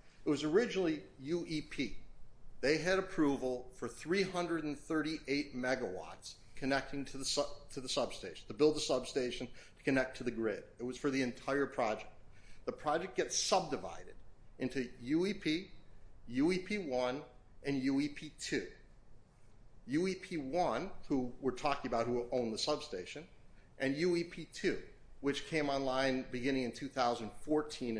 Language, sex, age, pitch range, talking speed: English, male, 40-59, 130-165 Hz, 125 wpm